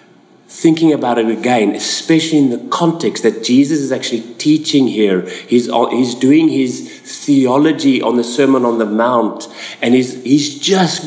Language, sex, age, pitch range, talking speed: English, male, 30-49, 130-165 Hz, 155 wpm